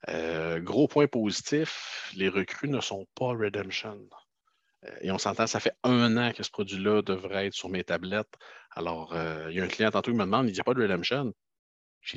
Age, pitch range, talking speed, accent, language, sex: 50-69, 95-115 Hz, 215 wpm, Canadian, French, male